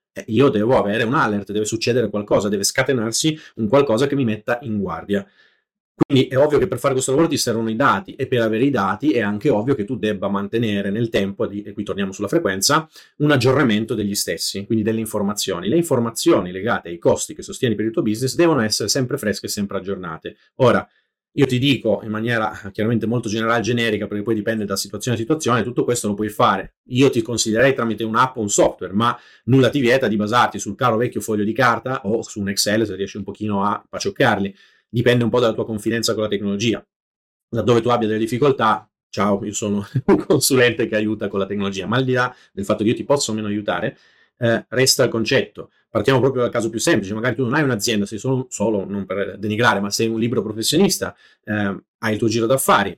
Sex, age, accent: male, 30-49, native